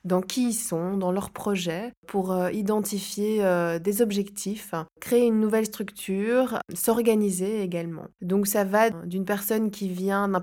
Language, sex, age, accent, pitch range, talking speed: French, female, 20-39, French, 180-210 Hz, 145 wpm